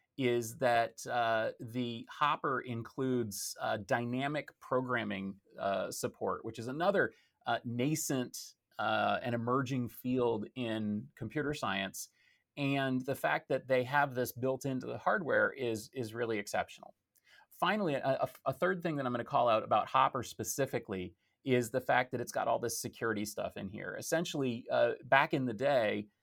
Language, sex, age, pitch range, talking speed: English, male, 30-49, 110-130 Hz, 160 wpm